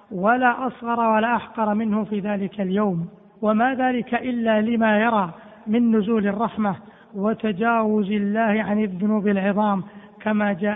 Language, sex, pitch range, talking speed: Arabic, male, 205-235 Hz, 130 wpm